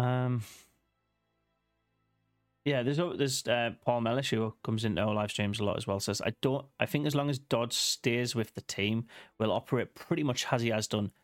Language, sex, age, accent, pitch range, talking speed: English, male, 30-49, British, 110-135 Hz, 200 wpm